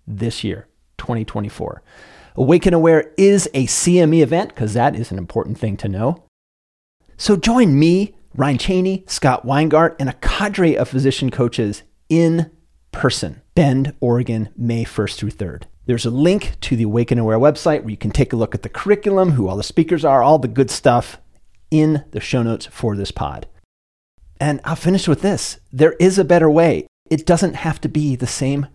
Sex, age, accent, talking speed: male, 30-49, American, 185 wpm